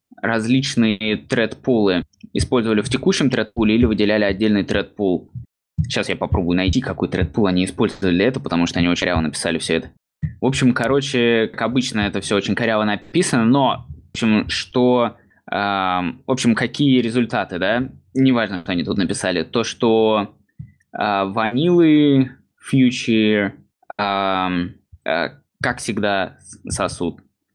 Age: 20-39